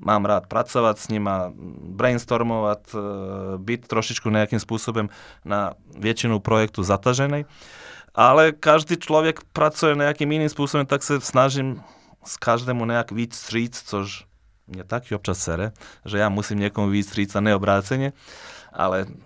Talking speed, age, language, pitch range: 140 wpm, 30-49, Czech, 105-125 Hz